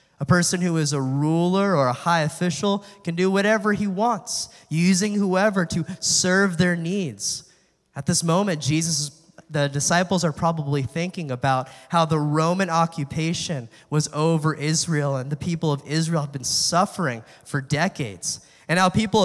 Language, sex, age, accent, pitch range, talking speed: English, male, 20-39, American, 140-175 Hz, 160 wpm